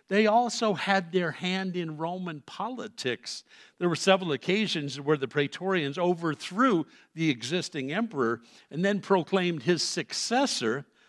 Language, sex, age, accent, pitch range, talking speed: English, male, 60-79, American, 145-190 Hz, 130 wpm